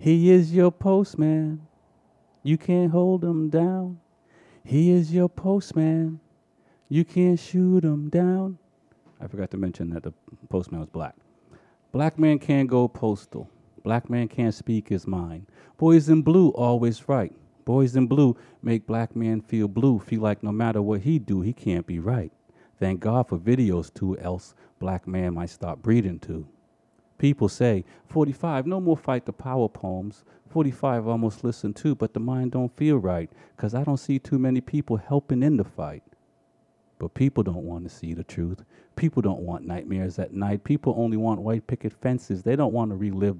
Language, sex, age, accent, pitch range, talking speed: English, male, 40-59, American, 95-140 Hz, 180 wpm